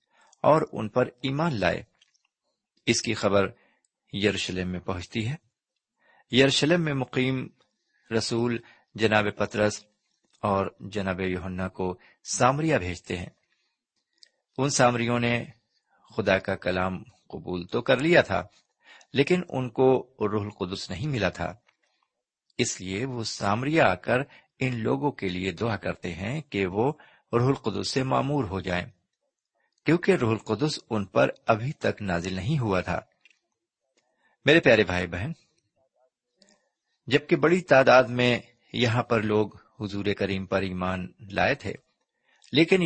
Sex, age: male, 50-69